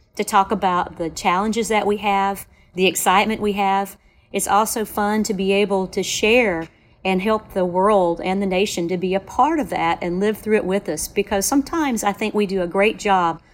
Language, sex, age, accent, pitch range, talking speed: English, female, 40-59, American, 180-210 Hz, 215 wpm